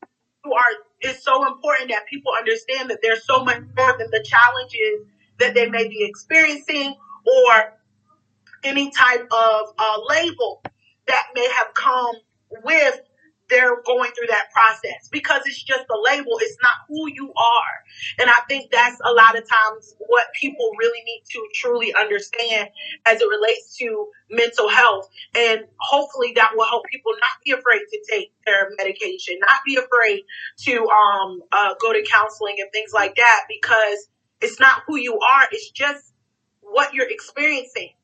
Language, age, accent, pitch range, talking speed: English, 30-49, American, 220-300 Hz, 165 wpm